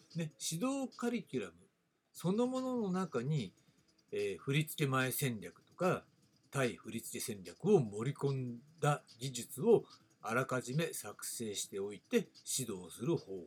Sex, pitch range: male, 130-195 Hz